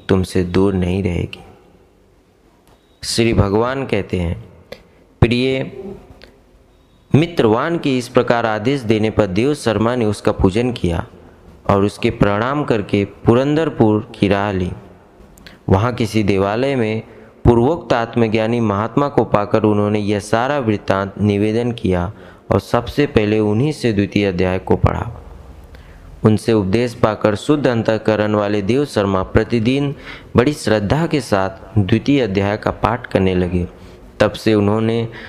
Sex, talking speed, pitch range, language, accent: male, 120 wpm, 95-120 Hz, Hindi, native